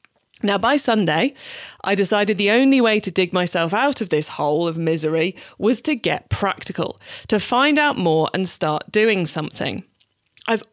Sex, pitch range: female, 165-220 Hz